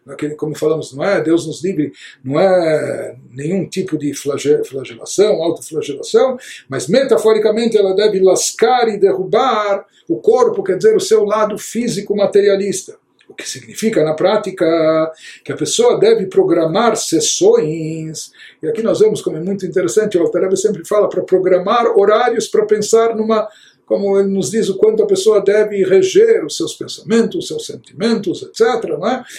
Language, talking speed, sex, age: Portuguese, 155 wpm, male, 60-79